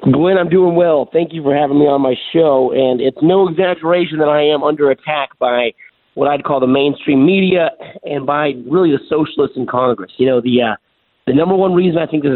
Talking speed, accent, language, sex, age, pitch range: 225 wpm, American, English, male, 50-69, 130-160 Hz